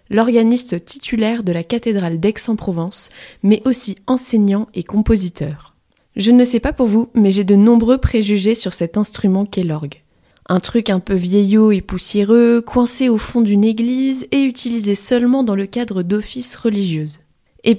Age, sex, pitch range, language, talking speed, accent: 20-39, female, 190-230 Hz, French, 160 wpm, French